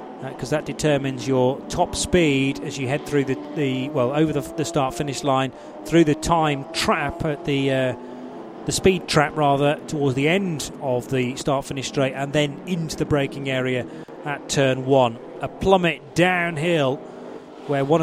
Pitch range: 135-165 Hz